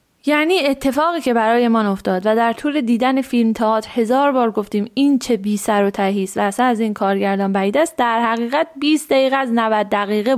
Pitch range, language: 190-255 Hz, Persian